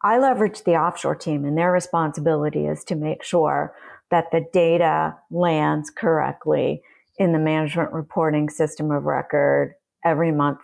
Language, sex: English, female